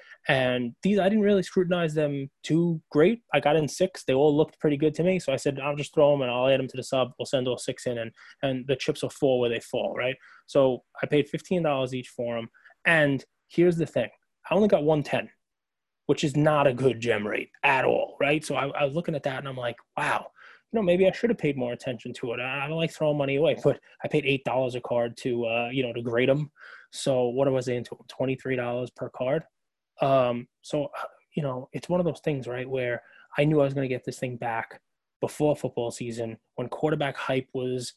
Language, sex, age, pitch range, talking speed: English, male, 20-39, 125-150 Hz, 240 wpm